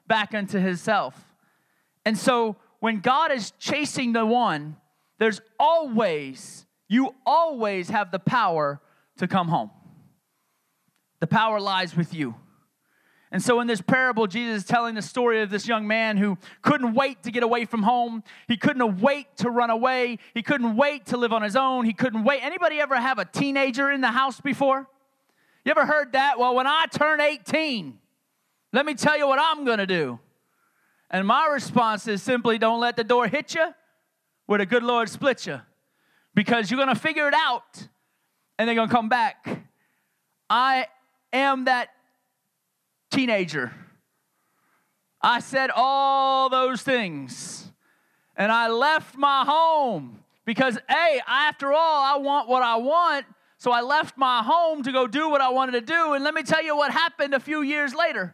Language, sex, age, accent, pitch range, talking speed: English, male, 30-49, American, 220-280 Hz, 175 wpm